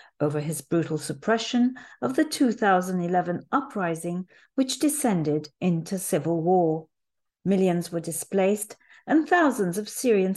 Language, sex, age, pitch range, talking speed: English, female, 40-59, 175-250 Hz, 115 wpm